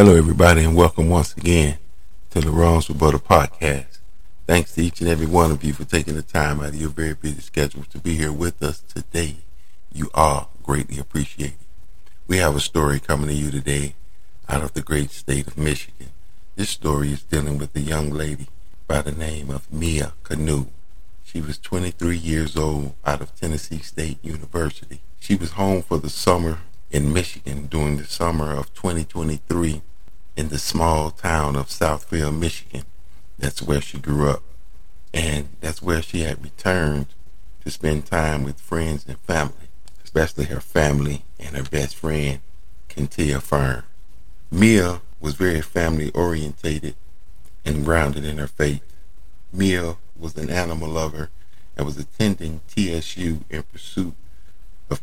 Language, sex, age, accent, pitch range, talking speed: English, male, 50-69, American, 75-85 Hz, 160 wpm